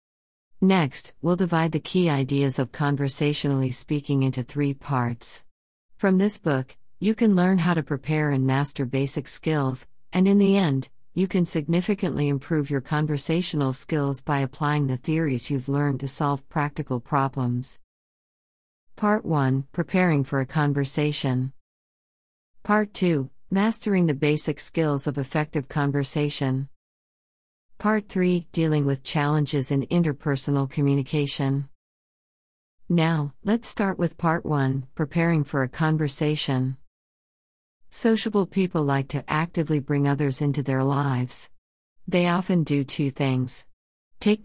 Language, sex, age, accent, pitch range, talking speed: English, female, 50-69, American, 135-165 Hz, 130 wpm